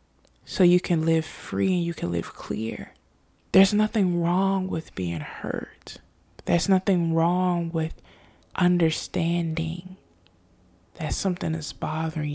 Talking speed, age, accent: 120 wpm, 20-39, American